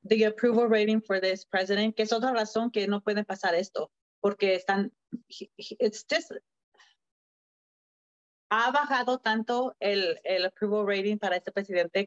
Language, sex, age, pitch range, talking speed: English, female, 30-49, 195-235 Hz, 155 wpm